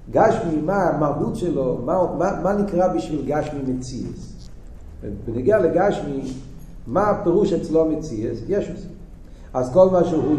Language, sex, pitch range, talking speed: Hebrew, male, 155-195 Hz, 125 wpm